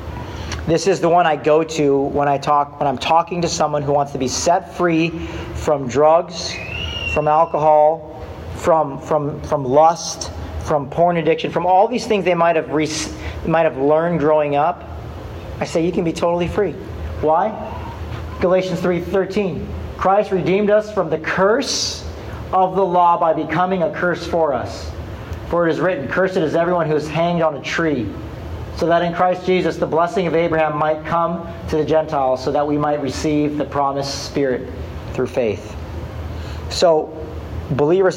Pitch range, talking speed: 105-170 Hz, 170 wpm